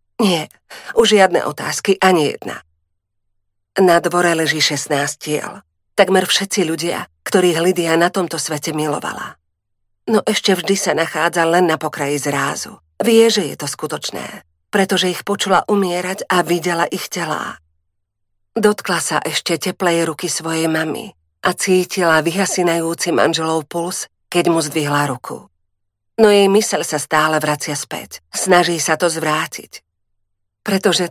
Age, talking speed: 40-59, 135 wpm